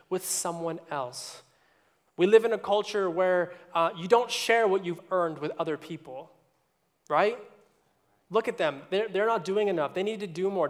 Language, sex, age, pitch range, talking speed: English, male, 20-39, 165-205 Hz, 185 wpm